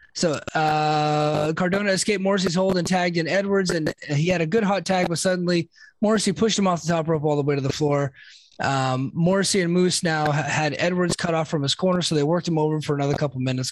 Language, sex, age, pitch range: English, male, 20-39, 145-185 Hz